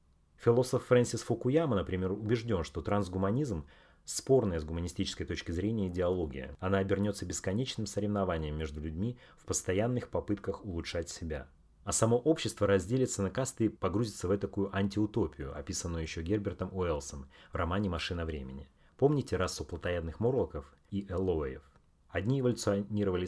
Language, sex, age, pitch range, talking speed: Russian, male, 30-49, 80-105 Hz, 135 wpm